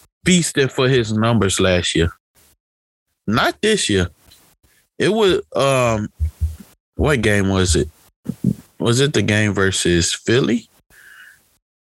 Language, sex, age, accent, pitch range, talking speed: English, male, 20-39, American, 90-125 Hz, 110 wpm